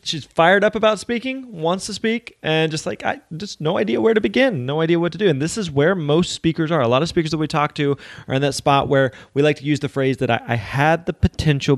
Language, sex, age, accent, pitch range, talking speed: English, male, 20-39, American, 130-160 Hz, 280 wpm